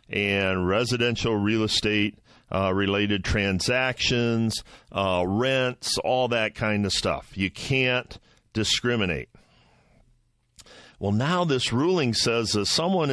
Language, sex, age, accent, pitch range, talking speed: English, male, 50-69, American, 95-120 Hz, 105 wpm